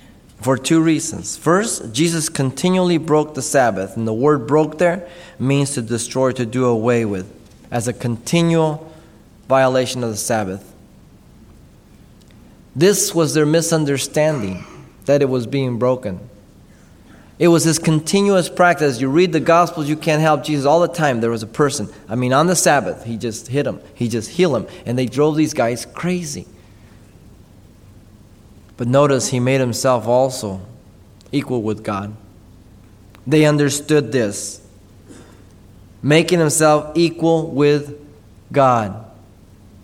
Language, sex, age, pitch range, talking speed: English, male, 30-49, 110-155 Hz, 140 wpm